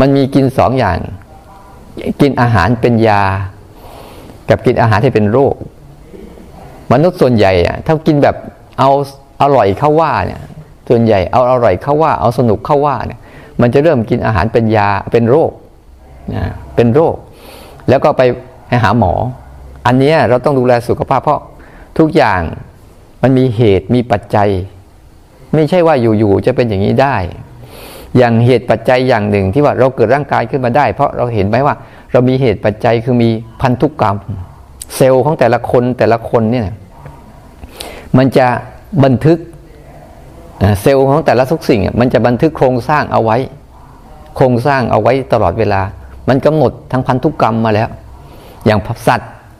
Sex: male